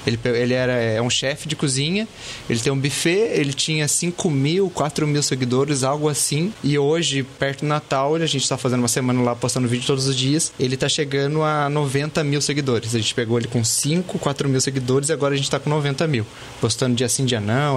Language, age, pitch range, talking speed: Portuguese, 20-39, 130-160 Hz, 225 wpm